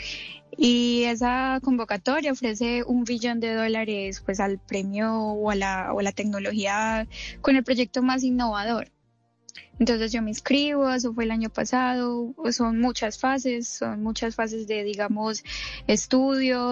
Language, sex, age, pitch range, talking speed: Spanish, female, 10-29, 215-255 Hz, 150 wpm